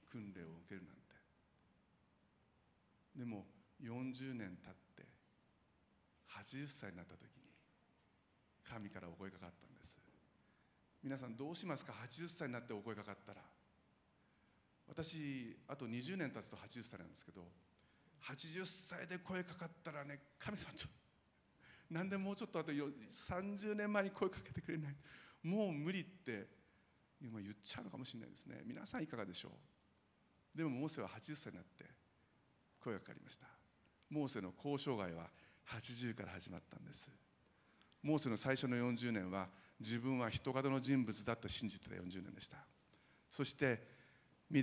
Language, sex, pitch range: Japanese, male, 100-145 Hz